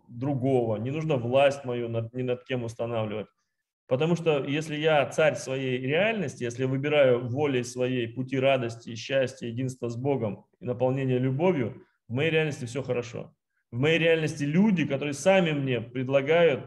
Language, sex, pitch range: Russian, male, 125-155 Hz